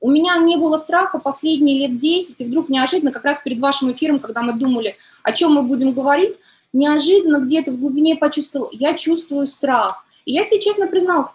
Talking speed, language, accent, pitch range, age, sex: 195 wpm, Russian, native, 265-325 Hz, 20-39, female